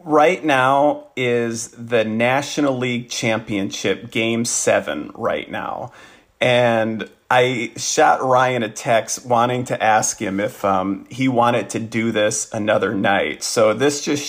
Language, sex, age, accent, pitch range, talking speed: English, male, 40-59, American, 110-130 Hz, 140 wpm